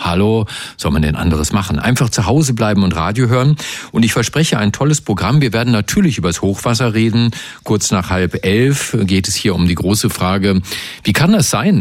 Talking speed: 210 wpm